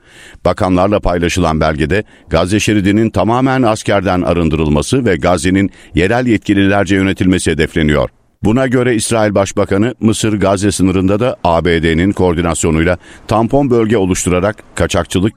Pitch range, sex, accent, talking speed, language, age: 85-105 Hz, male, native, 105 wpm, Turkish, 50-69